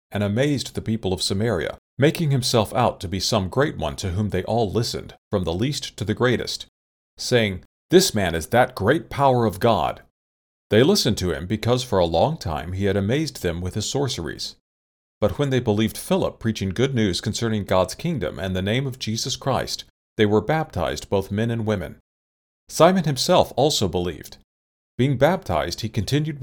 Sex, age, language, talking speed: male, 40-59, English, 185 wpm